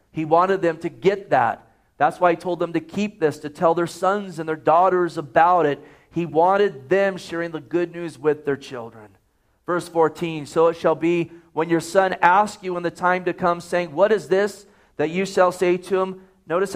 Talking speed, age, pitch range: 215 wpm, 40-59, 155-185 Hz